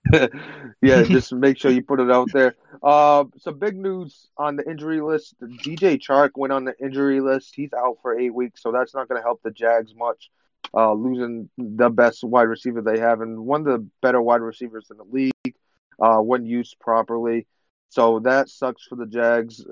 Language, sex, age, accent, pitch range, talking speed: English, male, 30-49, American, 110-130 Hz, 200 wpm